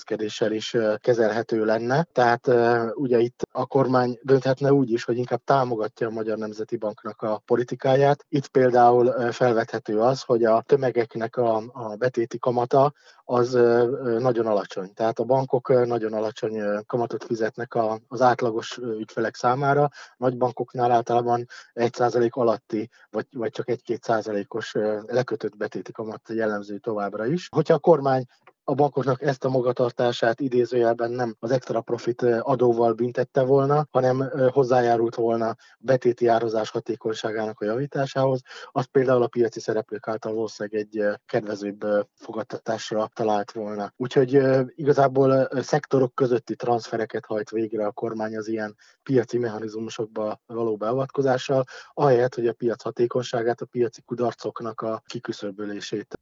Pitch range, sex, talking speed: 110-130 Hz, male, 130 wpm